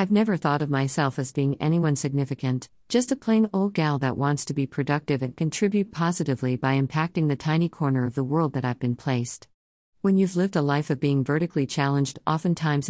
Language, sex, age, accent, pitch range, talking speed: English, female, 50-69, American, 130-160 Hz, 205 wpm